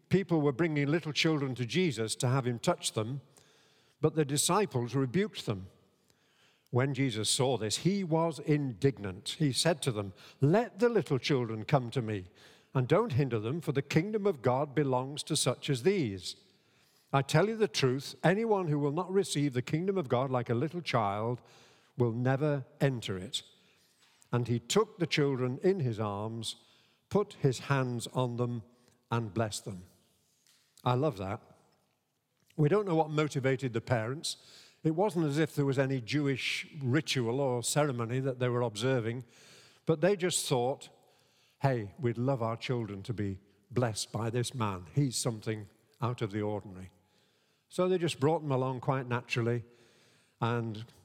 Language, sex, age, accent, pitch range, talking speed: English, male, 50-69, British, 115-150 Hz, 165 wpm